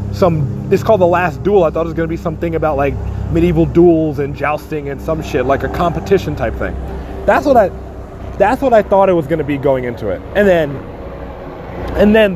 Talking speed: 230 wpm